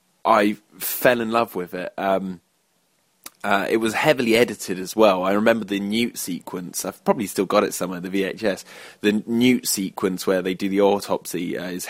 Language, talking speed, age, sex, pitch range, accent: English, 185 wpm, 20-39, male, 95-115 Hz, British